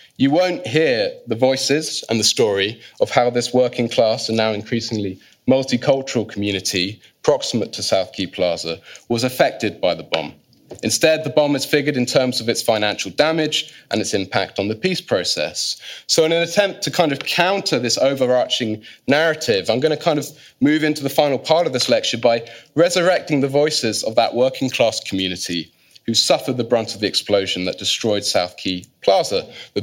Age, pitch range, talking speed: 30-49, 110-150 Hz, 185 wpm